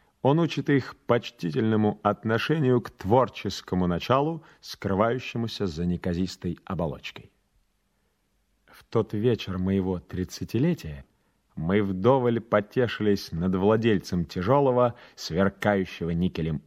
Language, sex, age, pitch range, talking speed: Russian, male, 30-49, 90-120 Hz, 90 wpm